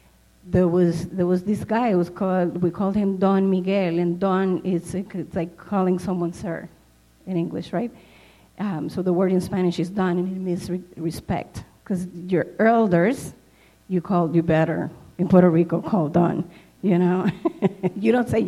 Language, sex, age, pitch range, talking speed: English, female, 30-49, 180-240 Hz, 175 wpm